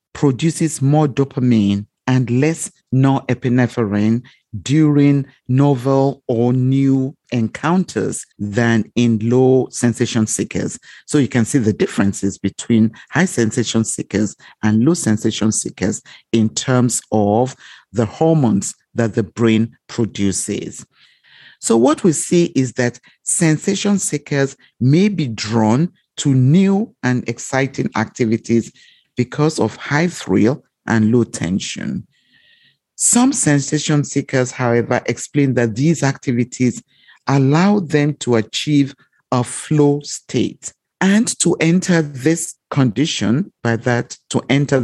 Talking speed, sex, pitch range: 115 wpm, male, 115-150 Hz